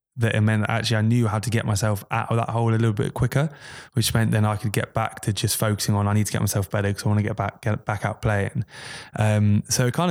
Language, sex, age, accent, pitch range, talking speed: English, male, 20-39, British, 105-115 Hz, 290 wpm